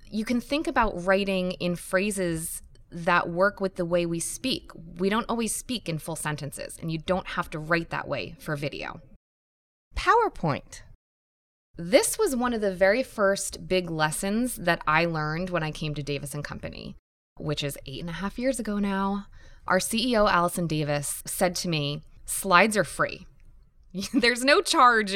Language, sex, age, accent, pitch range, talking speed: English, female, 20-39, American, 165-220 Hz, 170 wpm